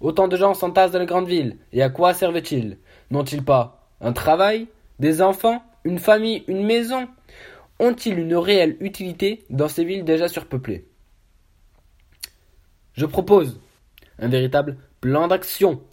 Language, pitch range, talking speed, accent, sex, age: French, 135-185 Hz, 140 wpm, French, male, 20-39